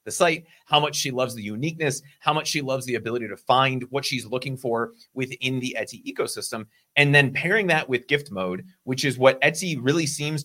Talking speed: 210 wpm